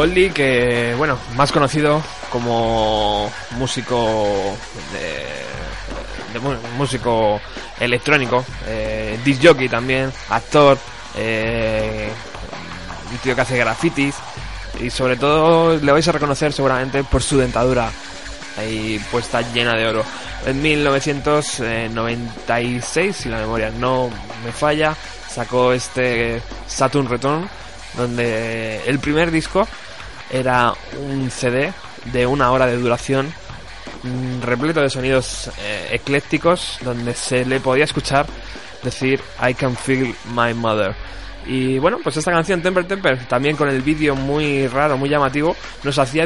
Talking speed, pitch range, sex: 120 wpm, 115-145 Hz, male